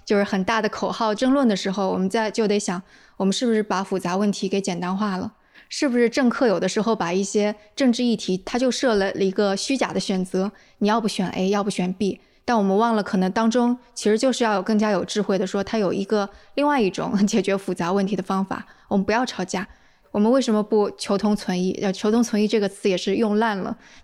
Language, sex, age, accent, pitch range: Chinese, female, 20-39, native, 195-235 Hz